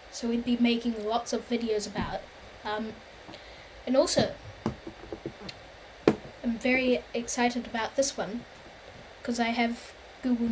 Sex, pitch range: female, 225-275 Hz